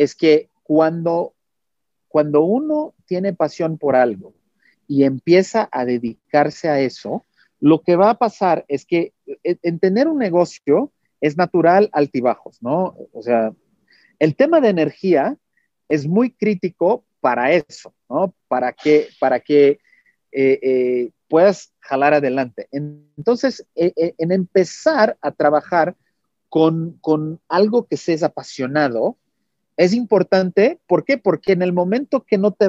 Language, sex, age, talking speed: Spanish, male, 40-59, 135 wpm